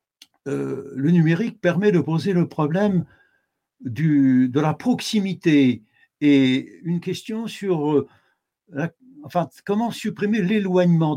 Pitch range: 135-175 Hz